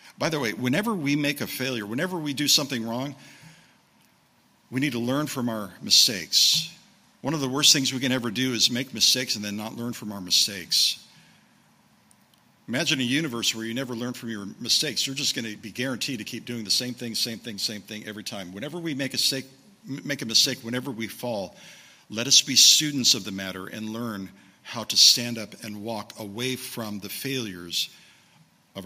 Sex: male